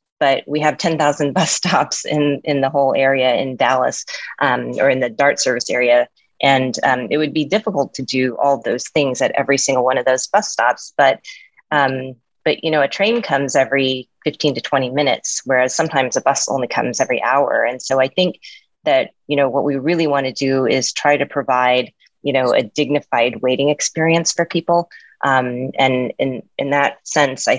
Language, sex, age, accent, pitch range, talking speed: English, female, 30-49, American, 130-150 Hz, 200 wpm